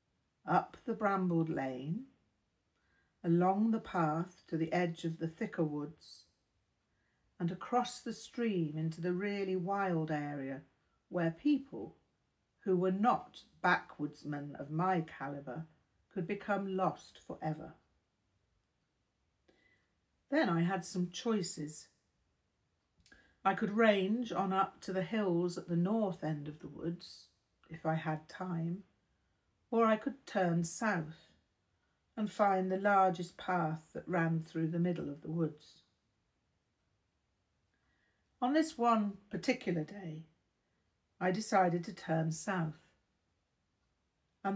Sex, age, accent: female, 50-69, British